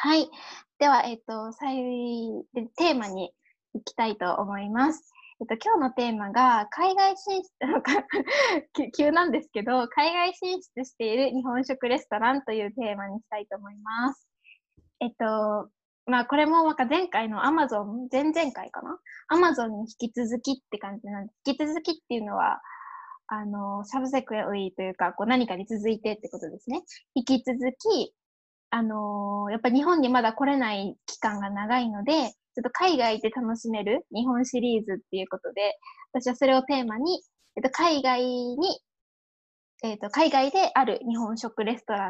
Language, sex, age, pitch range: Japanese, female, 10-29, 215-295 Hz